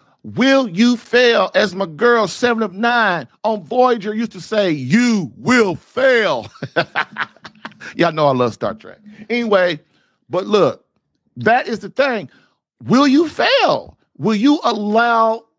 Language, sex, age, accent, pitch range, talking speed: English, male, 50-69, American, 165-225 Hz, 140 wpm